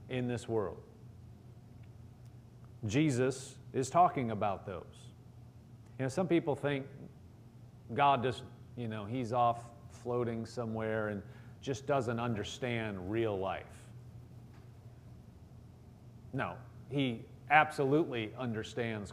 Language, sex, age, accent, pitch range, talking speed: English, male, 40-59, American, 115-135 Hz, 95 wpm